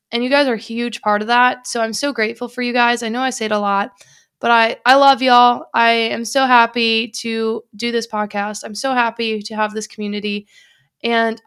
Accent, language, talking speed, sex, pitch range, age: American, English, 230 wpm, female, 220-255 Hz, 20-39